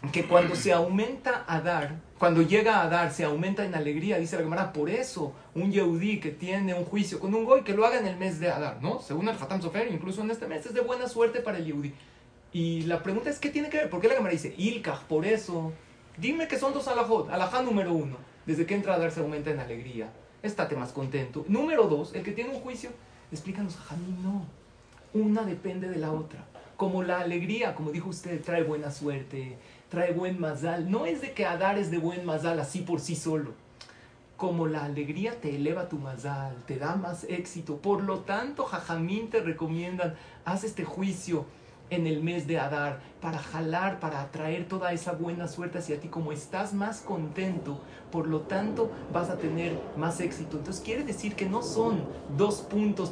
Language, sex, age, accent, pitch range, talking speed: Spanish, male, 40-59, Mexican, 155-200 Hz, 205 wpm